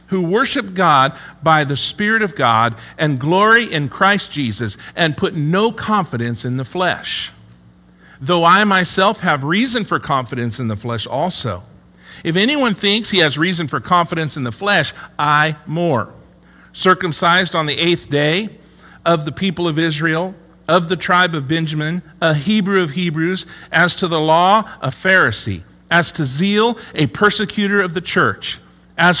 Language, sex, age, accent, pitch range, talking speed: English, male, 50-69, American, 120-185 Hz, 160 wpm